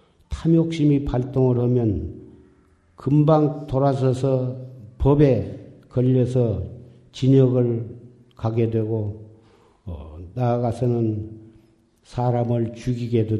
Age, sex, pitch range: 50-69, male, 110-135 Hz